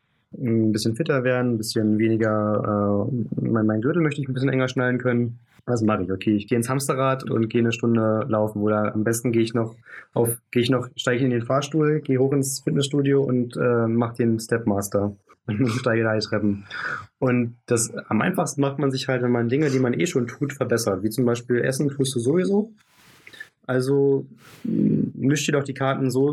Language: German